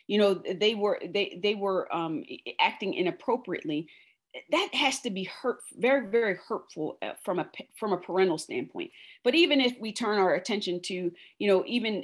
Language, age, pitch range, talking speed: English, 40-59, 175-230 Hz, 175 wpm